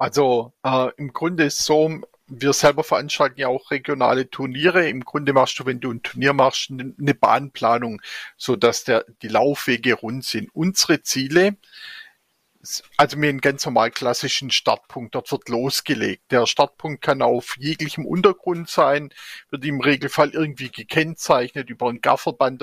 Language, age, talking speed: German, 40-59, 155 wpm